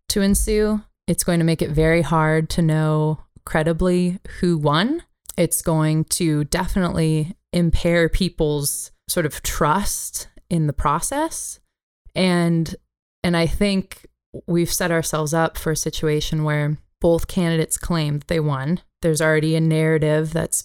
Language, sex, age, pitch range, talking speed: English, female, 20-39, 155-175 Hz, 140 wpm